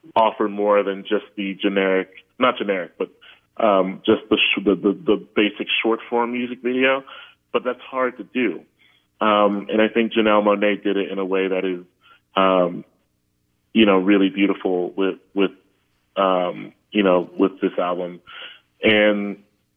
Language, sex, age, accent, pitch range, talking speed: English, male, 30-49, American, 90-110 Hz, 160 wpm